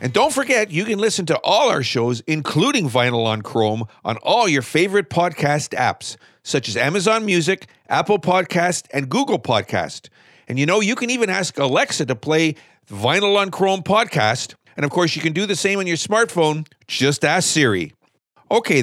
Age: 50-69